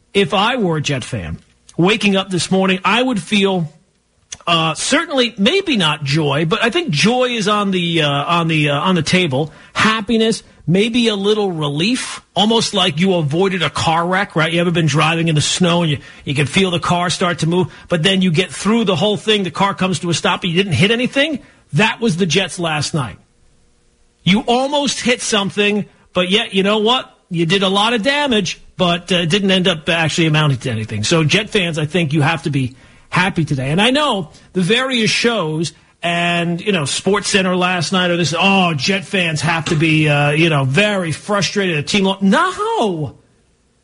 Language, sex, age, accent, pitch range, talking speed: English, male, 40-59, American, 160-210 Hz, 205 wpm